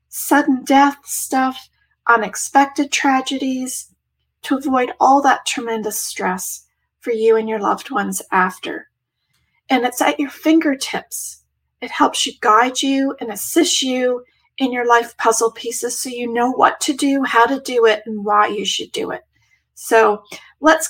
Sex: female